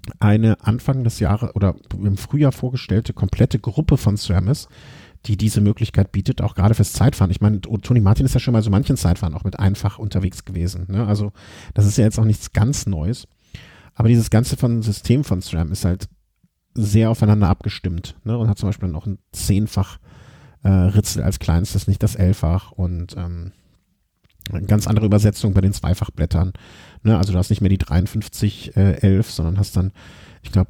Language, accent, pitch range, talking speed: German, German, 95-115 Hz, 190 wpm